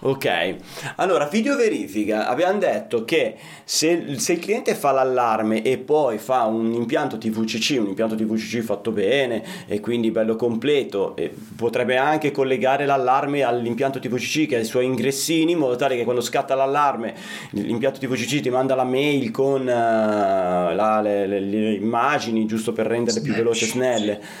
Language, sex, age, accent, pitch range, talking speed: Italian, male, 30-49, native, 110-140 Hz, 165 wpm